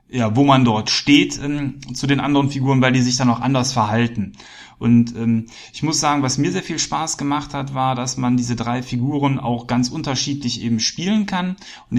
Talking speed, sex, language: 210 wpm, male, German